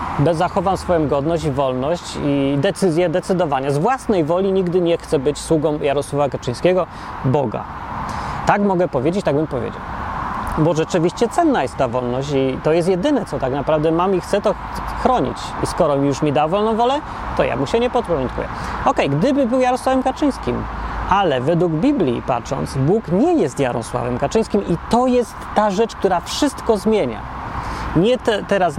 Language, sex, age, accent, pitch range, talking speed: Polish, male, 30-49, native, 140-200 Hz, 165 wpm